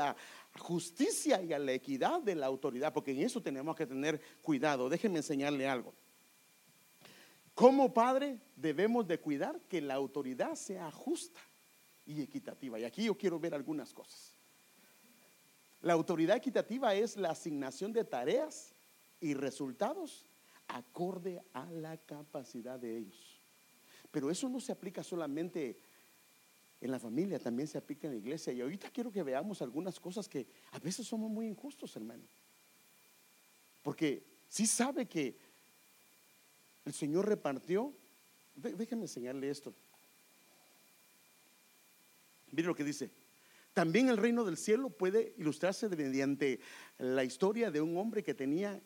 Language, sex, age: English, male, 50-69